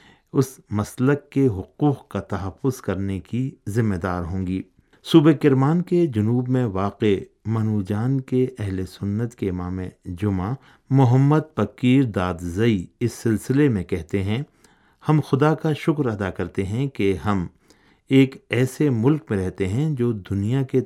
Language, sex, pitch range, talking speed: Urdu, male, 95-135 Hz, 145 wpm